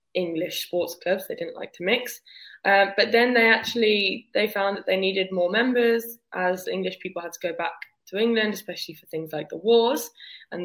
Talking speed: 205 wpm